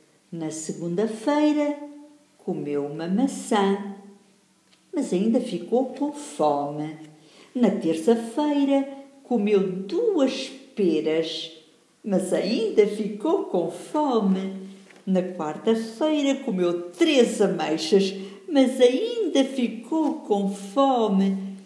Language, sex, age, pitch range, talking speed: English, female, 50-69, 165-260 Hz, 85 wpm